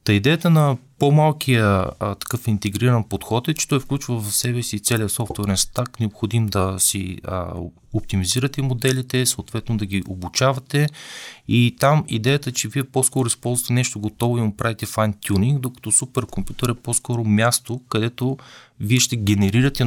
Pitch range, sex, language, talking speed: 105-130 Hz, male, Bulgarian, 155 wpm